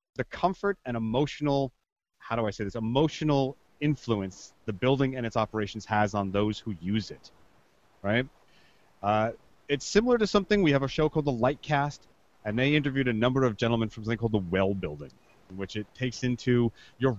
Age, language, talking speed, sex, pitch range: 30-49, English, 185 wpm, male, 110-135 Hz